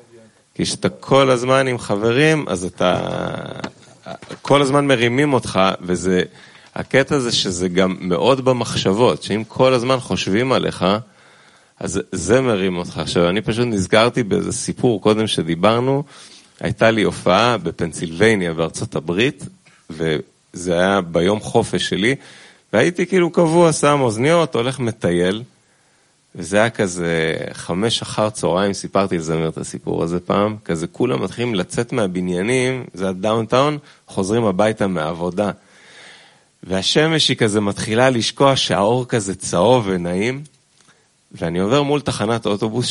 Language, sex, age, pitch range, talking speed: Hebrew, male, 30-49, 90-130 Hz, 125 wpm